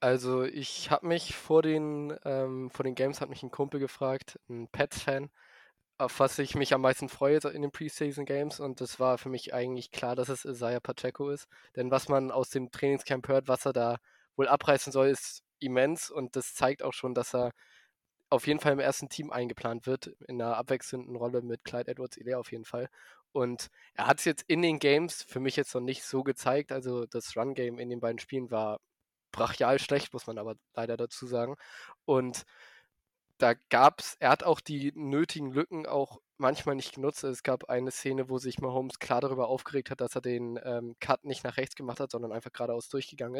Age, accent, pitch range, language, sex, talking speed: 20-39, German, 125-140 Hz, German, male, 205 wpm